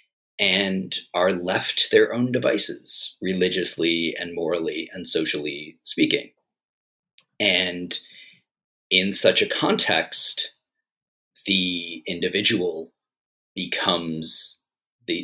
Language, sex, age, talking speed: English, male, 40-59, 85 wpm